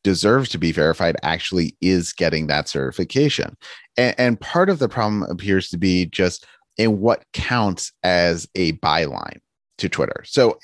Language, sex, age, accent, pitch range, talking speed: English, male, 30-49, American, 80-110 Hz, 160 wpm